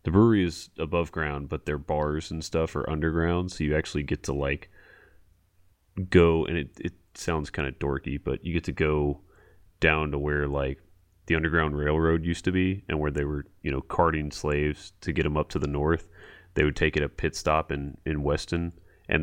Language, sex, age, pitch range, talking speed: English, male, 30-49, 75-85 Hz, 210 wpm